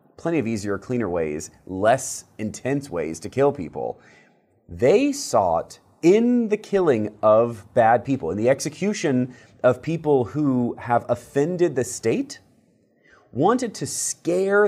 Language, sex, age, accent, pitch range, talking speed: English, male, 30-49, American, 110-155 Hz, 130 wpm